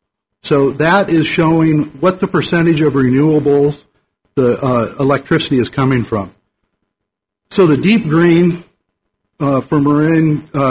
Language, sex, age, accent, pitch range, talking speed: English, male, 50-69, American, 130-160 Hz, 125 wpm